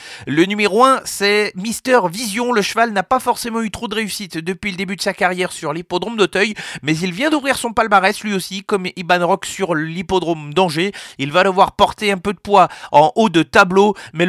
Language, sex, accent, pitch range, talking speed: French, male, French, 180-210 Hz, 215 wpm